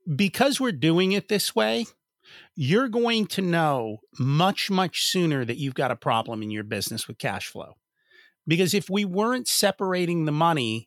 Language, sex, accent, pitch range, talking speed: English, male, American, 135-190 Hz, 170 wpm